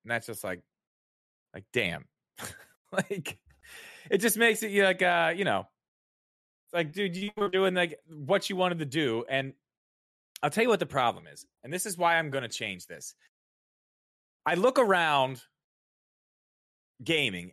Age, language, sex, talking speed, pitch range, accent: 30-49, English, male, 170 wpm, 140-185 Hz, American